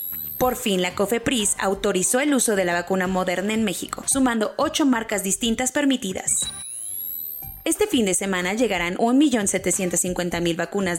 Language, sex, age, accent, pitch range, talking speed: Spanish, female, 20-39, Mexican, 180-225 Hz, 135 wpm